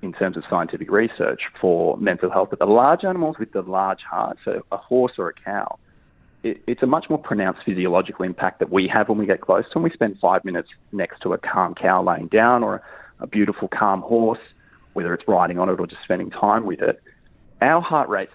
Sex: male